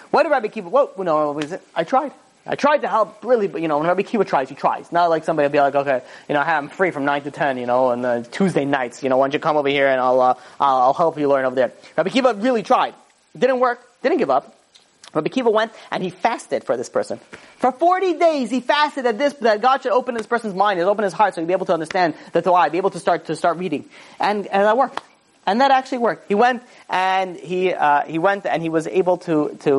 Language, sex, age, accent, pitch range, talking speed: English, male, 30-49, American, 155-220 Hz, 265 wpm